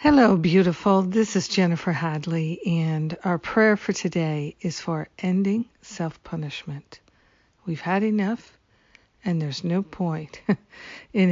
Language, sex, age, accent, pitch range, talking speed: English, female, 50-69, American, 165-185 Hz, 120 wpm